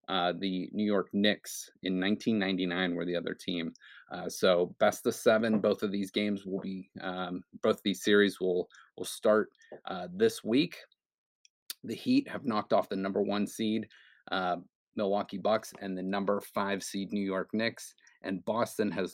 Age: 30-49